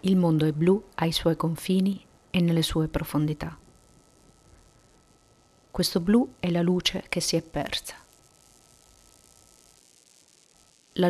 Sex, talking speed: female, 115 wpm